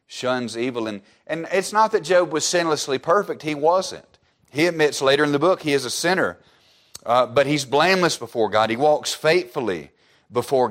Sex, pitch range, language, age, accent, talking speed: male, 125-170 Hz, English, 40-59, American, 185 wpm